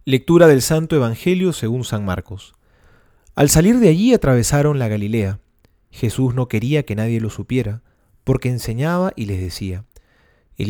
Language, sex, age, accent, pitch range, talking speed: Spanish, male, 30-49, Argentinian, 105-155 Hz, 150 wpm